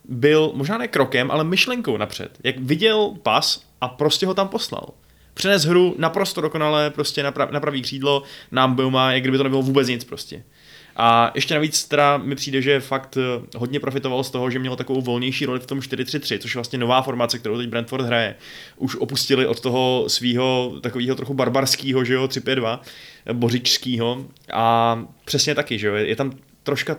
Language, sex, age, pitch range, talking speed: Czech, male, 20-39, 115-140 Hz, 185 wpm